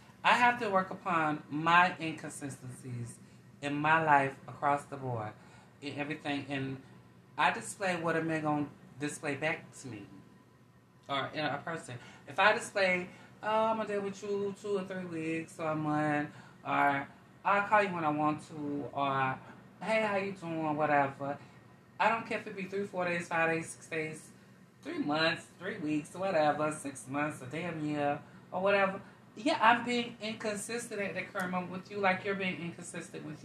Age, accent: 20-39, American